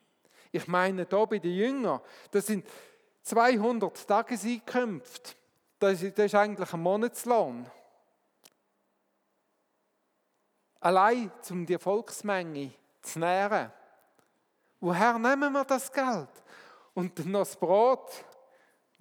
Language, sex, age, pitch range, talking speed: German, male, 50-69, 160-210 Hz, 100 wpm